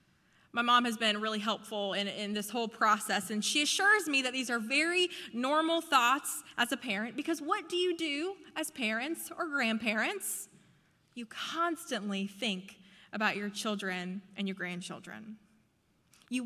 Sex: female